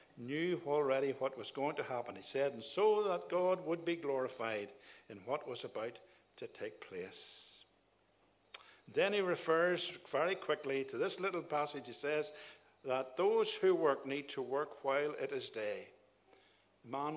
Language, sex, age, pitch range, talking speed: English, male, 60-79, 130-195 Hz, 160 wpm